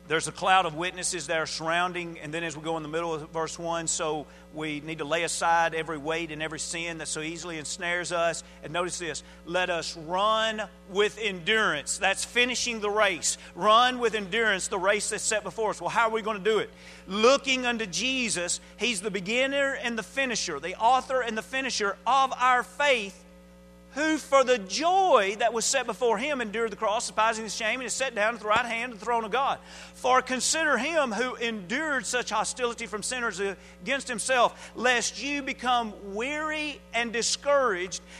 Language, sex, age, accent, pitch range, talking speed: English, male, 40-59, American, 180-265 Hz, 200 wpm